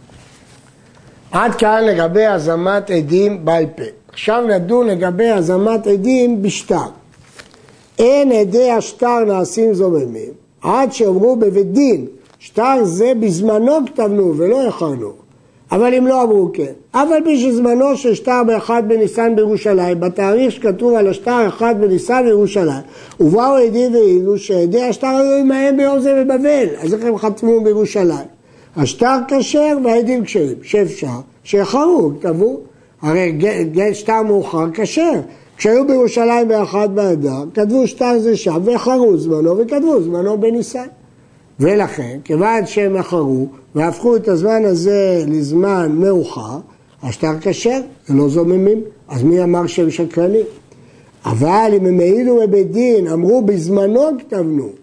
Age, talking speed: 60-79, 130 wpm